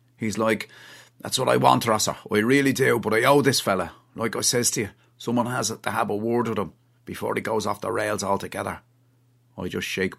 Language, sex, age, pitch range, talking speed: English, male, 30-49, 115-145 Hz, 225 wpm